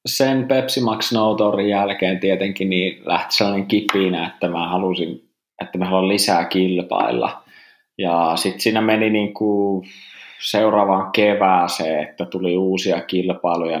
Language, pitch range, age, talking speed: Finnish, 90-105 Hz, 20-39, 125 wpm